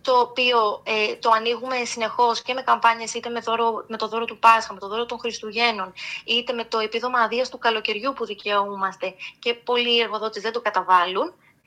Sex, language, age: female, Greek, 20-39